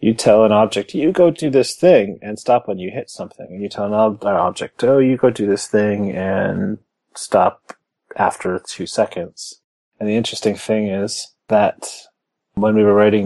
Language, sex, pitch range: English, male, 95-110 Hz